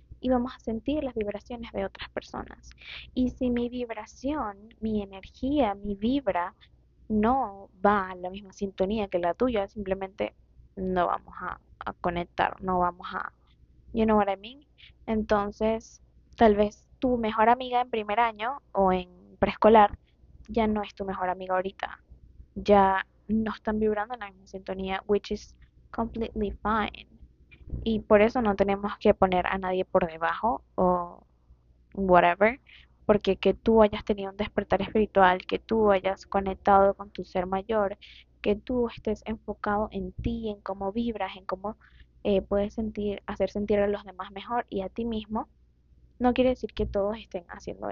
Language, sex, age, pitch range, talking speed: Spanish, female, 20-39, 190-220 Hz, 165 wpm